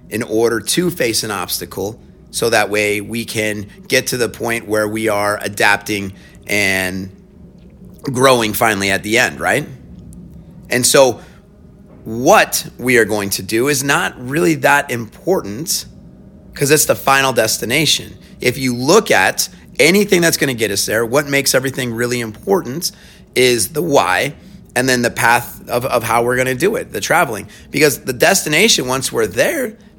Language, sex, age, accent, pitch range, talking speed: English, male, 30-49, American, 110-140 Hz, 165 wpm